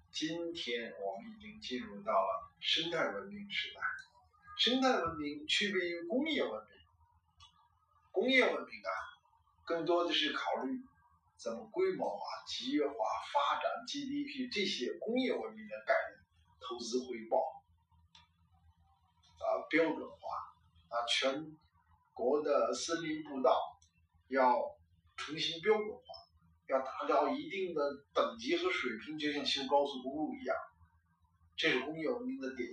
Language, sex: Chinese, male